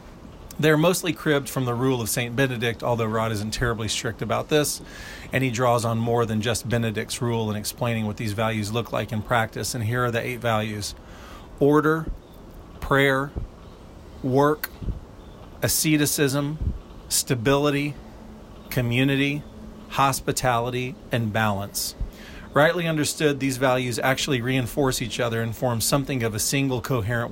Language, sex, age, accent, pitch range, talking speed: English, male, 40-59, American, 110-135 Hz, 140 wpm